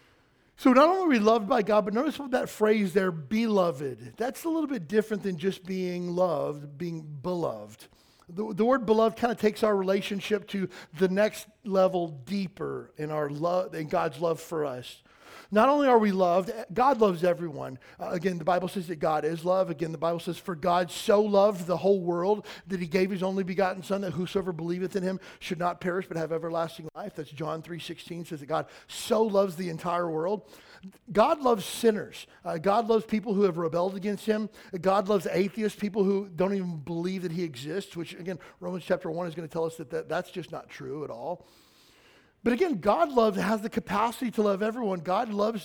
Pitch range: 175-215 Hz